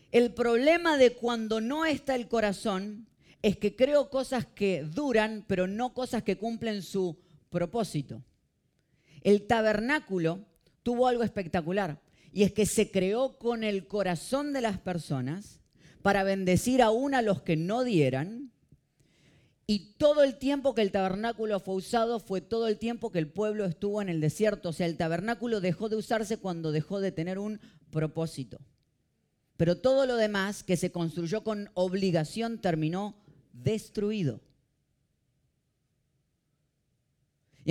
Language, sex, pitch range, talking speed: Spanish, female, 155-225 Hz, 145 wpm